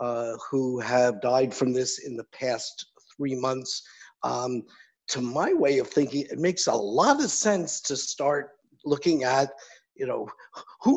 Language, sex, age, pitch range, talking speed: English, male, 50-69, 135-170 Hz, 165 wpm